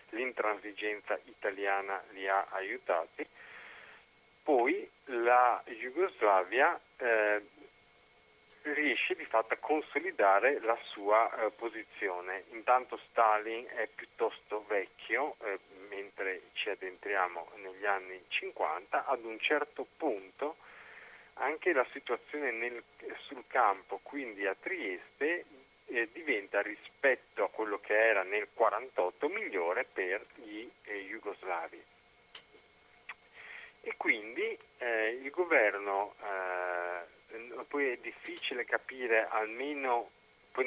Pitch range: 105-130 Hz